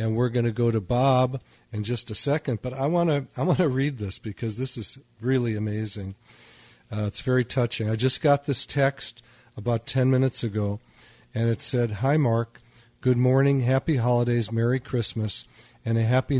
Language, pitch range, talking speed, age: English, 110-125 Hz, 190 wpm, 50-69